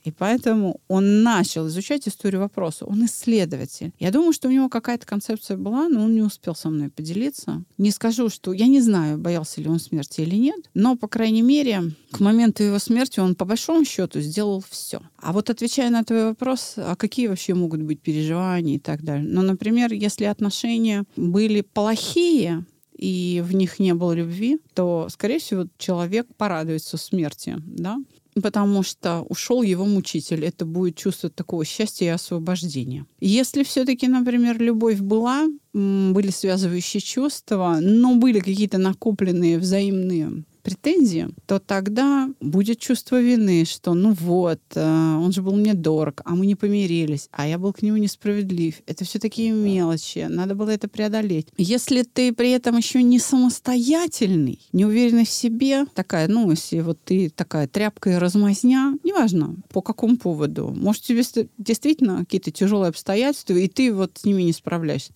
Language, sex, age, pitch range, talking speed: Russian, female, 30-49, 170-230 Hz, 165 wpm